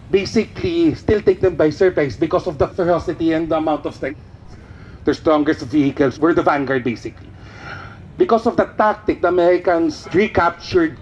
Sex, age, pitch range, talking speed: male, 40-59, 135-185 Hz, 160 wpm